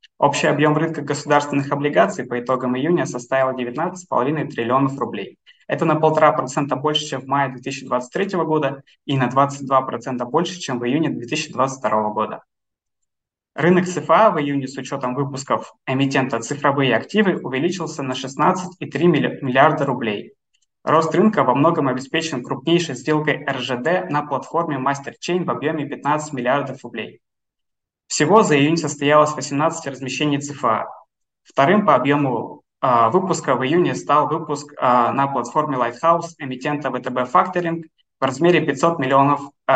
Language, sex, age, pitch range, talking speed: Russian, male, 20-39, 130-160 Hz, 135 wpm